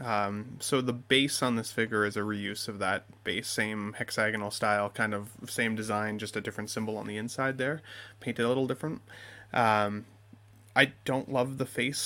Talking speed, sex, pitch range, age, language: 190 wpm, male, 110-135 Hz, 20-39, English